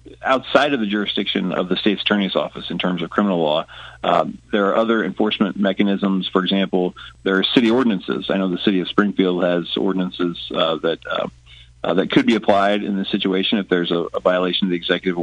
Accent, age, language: American, 40-59, English